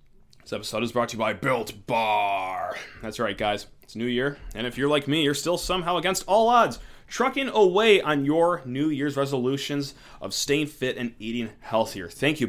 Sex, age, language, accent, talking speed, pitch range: male, 20-39, English, American, 195 wpm, 115-170 Hz